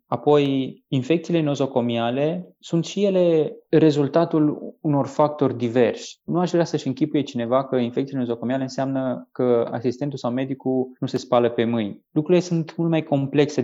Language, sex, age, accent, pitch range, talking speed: Romanian, male, 20-39, native, 125-160 Hz, 150 wpm